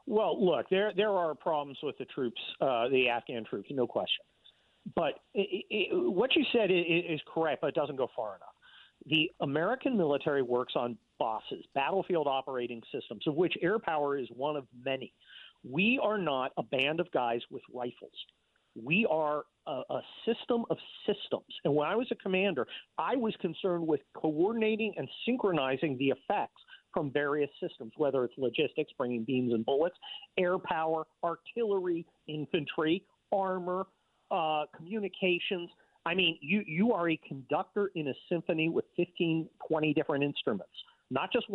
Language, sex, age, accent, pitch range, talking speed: English, male, 50-69, American, 145-205 Hz, 160 wpm